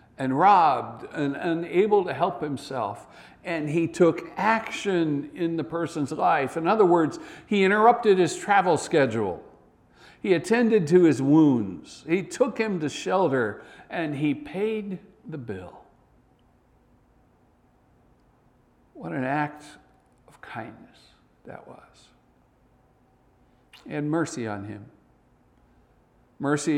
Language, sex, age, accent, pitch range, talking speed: English, male, 60-79, American, 110-160 Hz, 110 wpm